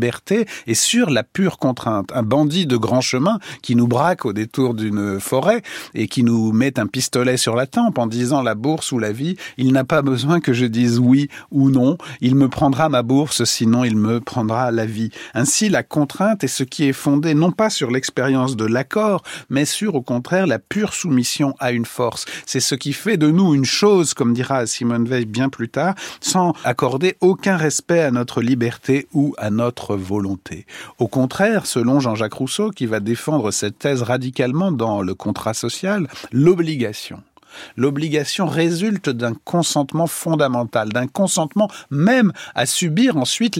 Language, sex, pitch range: French, male, 120-165 Hz